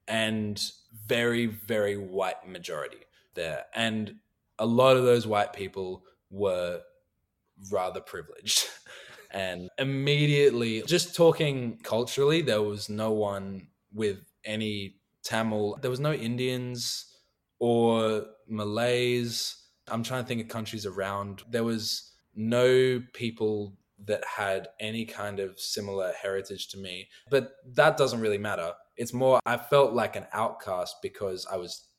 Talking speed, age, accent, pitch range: 130 wpm, 20-39, Australian, 100-120 Hz